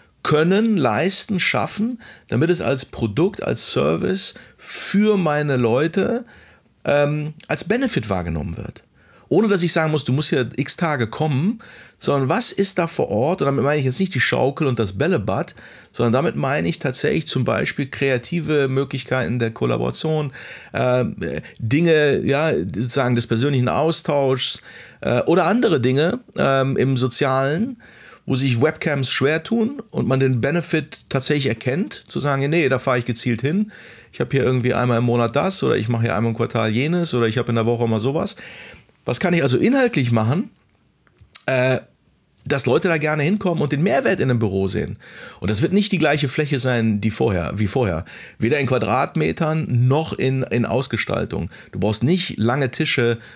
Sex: male